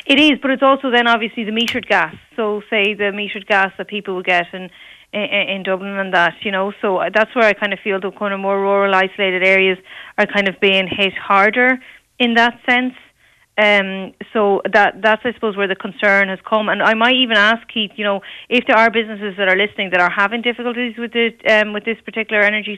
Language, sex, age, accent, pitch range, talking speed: English, female, 30-49, Irish, 195-220 Hz, 230 wpm